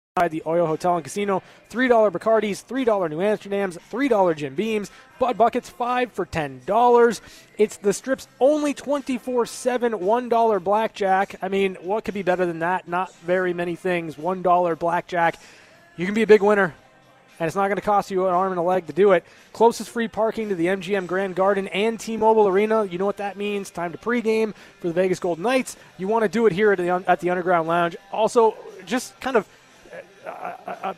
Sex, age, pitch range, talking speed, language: male, 20-39, 180-220 Hz, 195 wpm, English